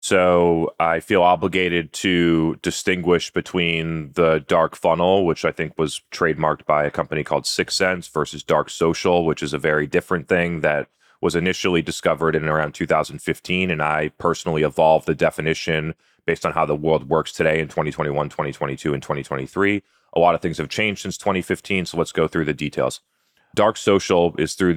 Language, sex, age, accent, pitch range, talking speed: English, male, 30-49, American, 80-90 Hz, 175 wpm